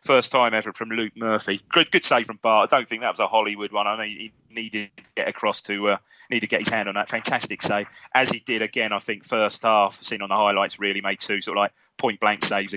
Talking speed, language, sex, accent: 270 wpm, English, male, British